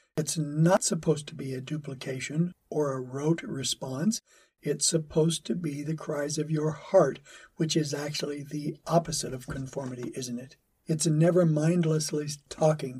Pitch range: 135-165 Hz